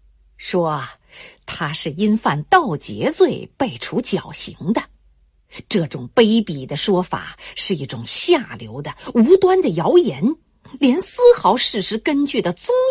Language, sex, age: Chinese, female, 50-69